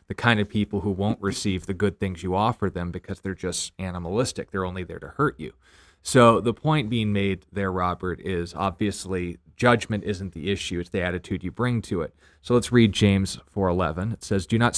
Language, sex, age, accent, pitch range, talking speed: English, male, 30-49, American, 90-110 Hz, 210 wpm